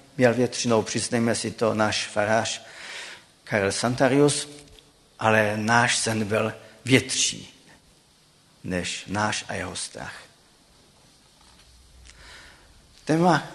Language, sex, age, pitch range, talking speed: Czech, male, 50-69, 110-140 Hz, 90 wpm